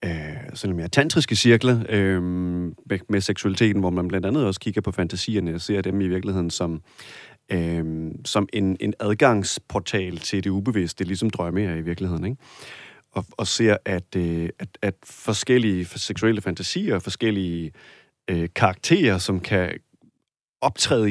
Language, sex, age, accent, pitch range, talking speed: Danish, male, 30-49, native, 95-125 Hz, 155 wpm